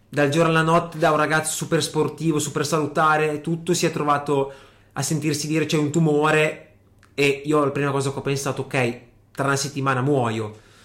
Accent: native